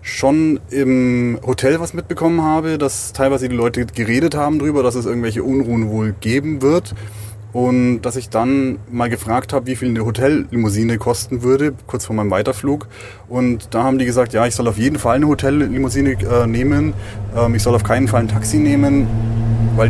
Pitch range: 110-130 Hz